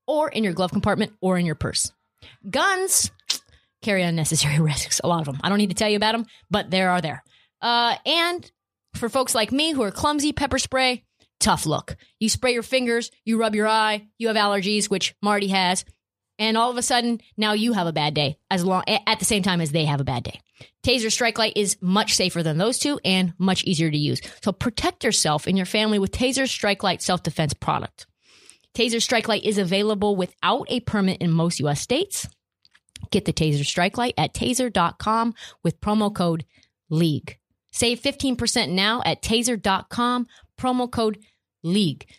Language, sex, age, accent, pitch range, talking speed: English, female, 30-49, American, 170-235 Hz, 195 wpm